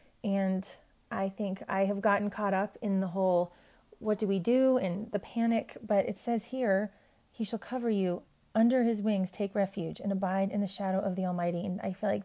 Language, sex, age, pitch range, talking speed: English, female, 30-49, 190-225 Hz, 210 wpm